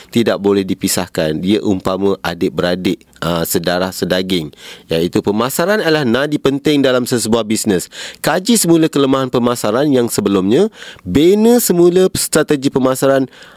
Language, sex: Indonesian, male